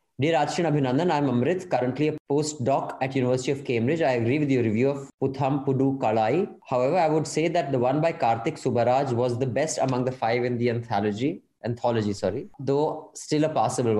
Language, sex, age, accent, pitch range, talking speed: English, male, 20-39, Indian, 120-150 Hz, 195 wpm